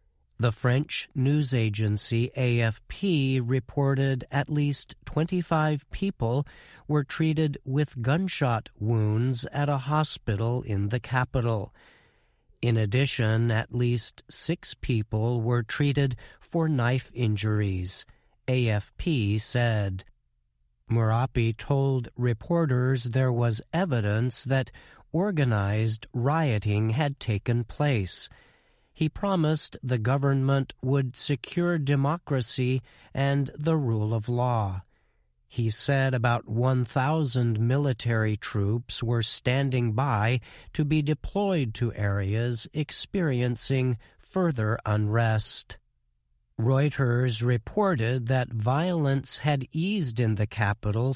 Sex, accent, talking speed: male, American, 100 wpm